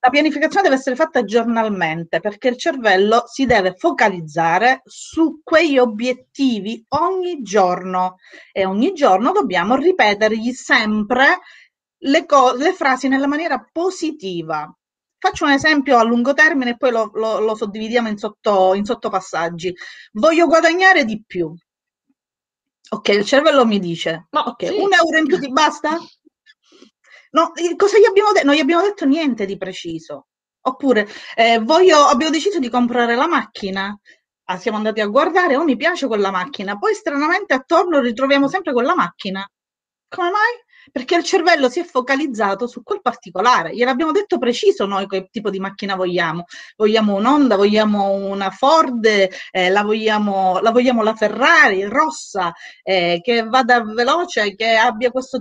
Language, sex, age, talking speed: Italian, female, 30-49, 145 wpm